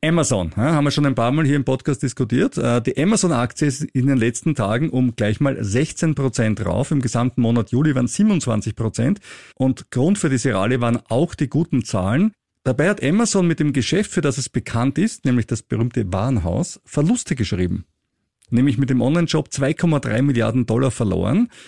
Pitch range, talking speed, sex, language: 120-150 Hz, 175 wpm, male, German